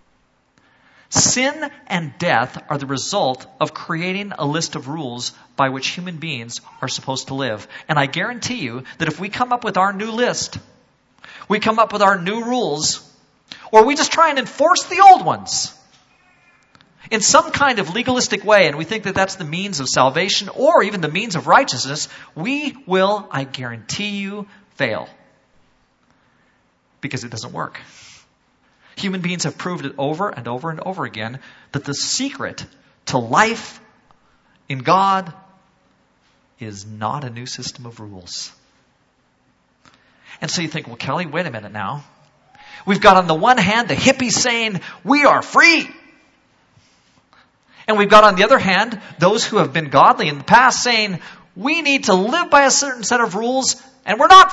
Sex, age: male, 40-59